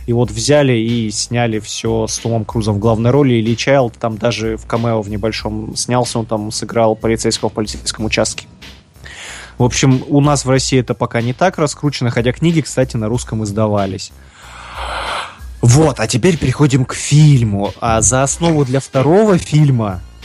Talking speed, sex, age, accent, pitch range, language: 170 wpm, male, 20-39, native, 110-135 Hz, Russian